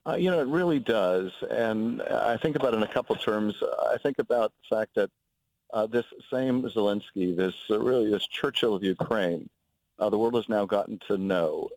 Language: English